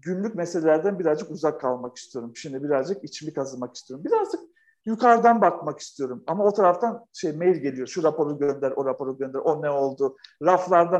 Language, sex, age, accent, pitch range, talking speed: Turkish, male, 50-69, native, 155-205 Hz, 170 wpm